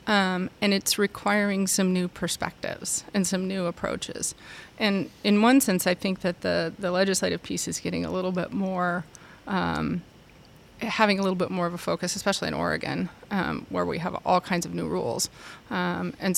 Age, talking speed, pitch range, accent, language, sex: 30-49, 185 wpm, 180-205 Hz, American, English, female